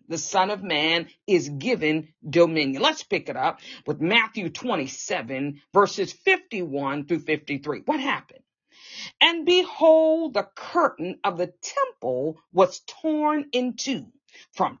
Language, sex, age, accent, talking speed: English, female, 40-59, American, 130 wpm